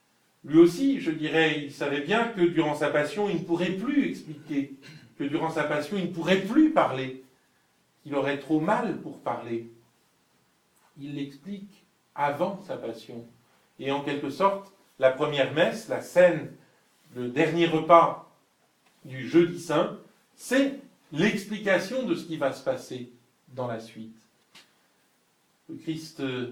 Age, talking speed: 50-69, 145 wpm